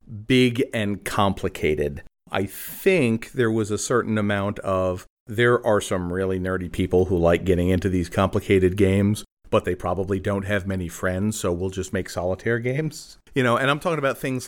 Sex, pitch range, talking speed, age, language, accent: male, 90-105 Hz, 180 wpm, 40-59, English, American